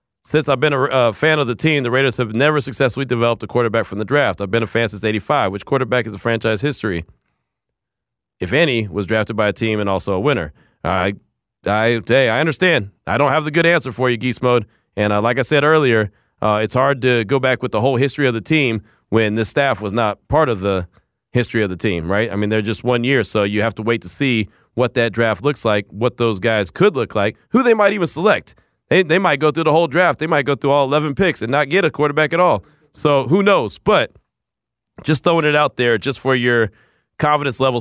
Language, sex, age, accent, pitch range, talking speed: English, male, 30-49, American, 110-150 Hz, 245 wpm